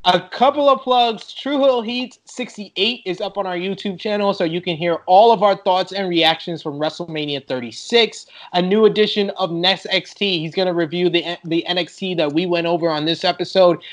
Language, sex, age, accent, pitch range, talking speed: English, male, 20-39, American, 165-195 Hz, 205 wpm